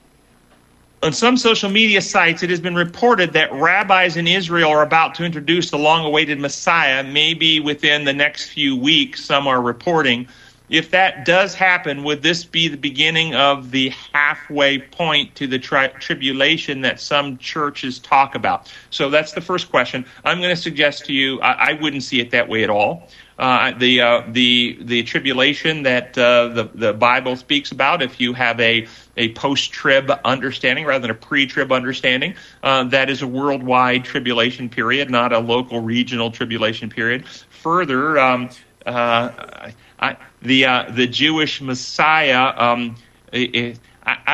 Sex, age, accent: male, 40-59, American